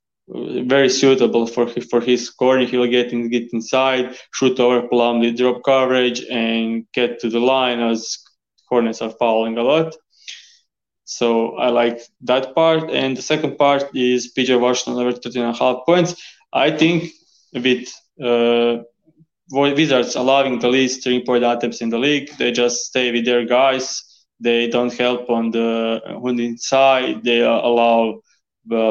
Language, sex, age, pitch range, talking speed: English, male, 20-39, 120-130 Hz, 160 wpm